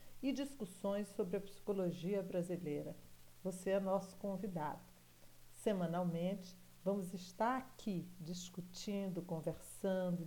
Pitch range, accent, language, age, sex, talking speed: 170-210 Hz, Brazilian, Portuguese, 50-69, female, 95 wpm